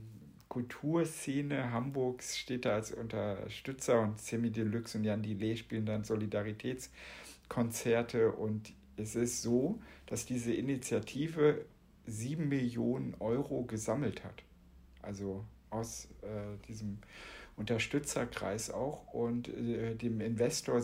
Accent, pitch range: German, 110-125 Hz